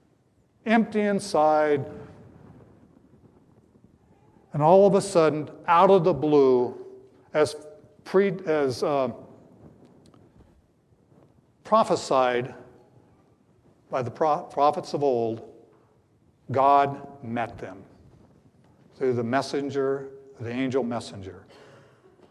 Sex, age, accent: male, 60-79, American